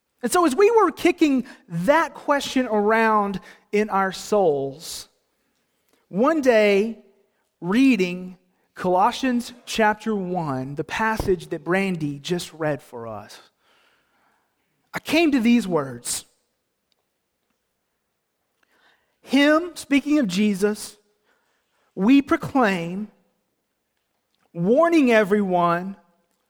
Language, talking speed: English, 90 wpm